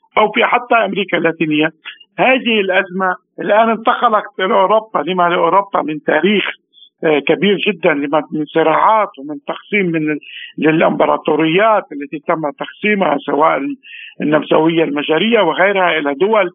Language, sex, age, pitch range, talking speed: Arabic, male, 50-69, 160-215 Hz, 115 wpm